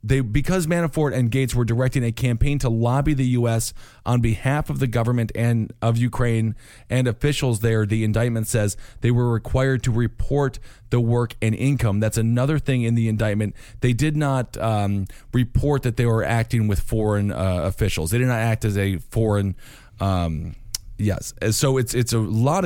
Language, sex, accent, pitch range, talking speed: English, male, American, 105-125 Hz, 185 wpm